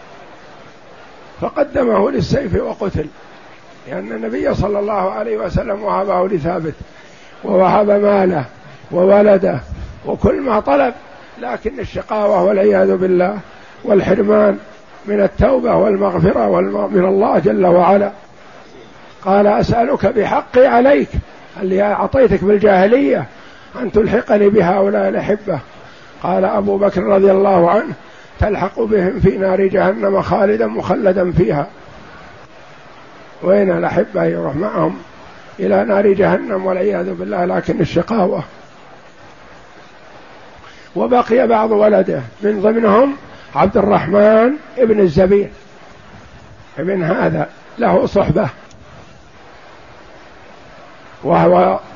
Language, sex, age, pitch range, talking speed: Arabic, male, 50-69, 185-205 Hz, 90 wpm